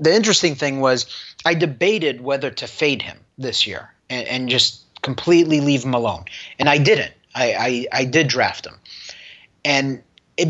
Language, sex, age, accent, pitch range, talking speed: English, male, 30-49, American, 130-155 Hz, 165 wpm